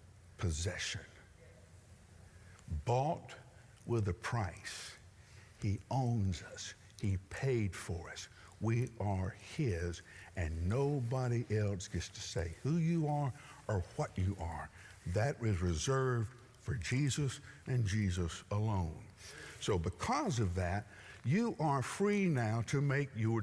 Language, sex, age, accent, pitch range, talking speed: English, male, 60-79, American, 95-135 Hz, 120 wpm